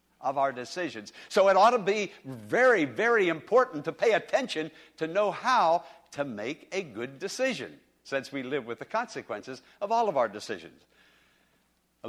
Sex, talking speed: male, 170 wpm